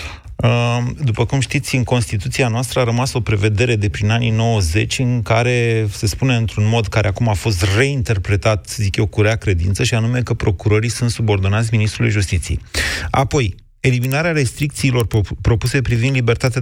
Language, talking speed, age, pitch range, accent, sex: Romanian, 160 wpm, 30-49, 110-130 Hz, native, male